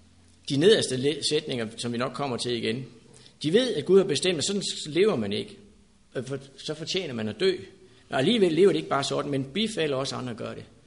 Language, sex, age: Danish, male, 60-79